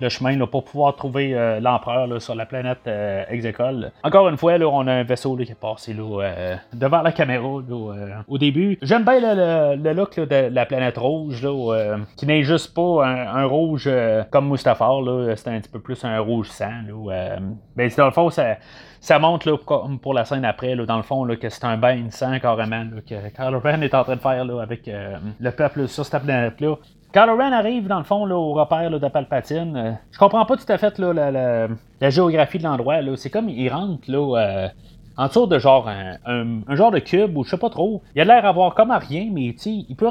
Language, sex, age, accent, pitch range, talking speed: French, male, 30-49, Canadian, 125-175 Hz, 240 wpm